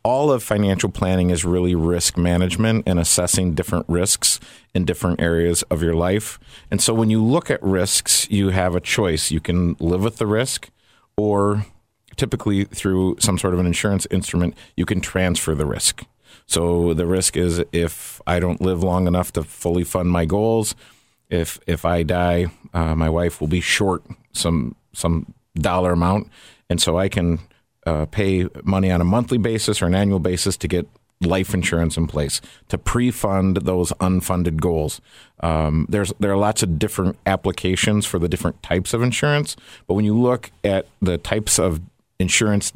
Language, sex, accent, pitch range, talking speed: English, male, American, 85-100 Hz, 180 wpm